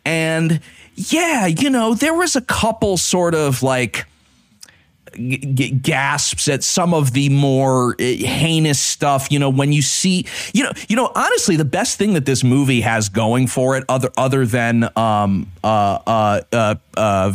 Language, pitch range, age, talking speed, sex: English, 115-155 Hz, 40-59, 165 wpm, male